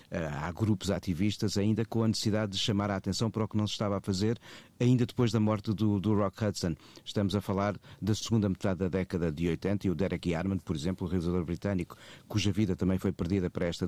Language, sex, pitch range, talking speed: Portuguese, male, 90-110 Hz, 235 wpm